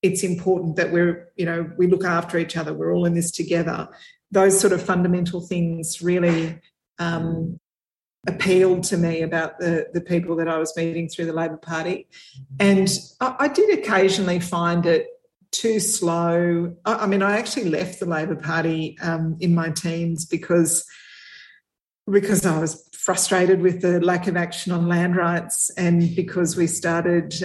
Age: 40-59